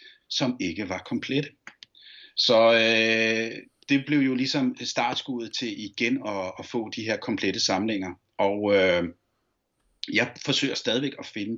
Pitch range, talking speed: 95-125 Hz, 140 wpm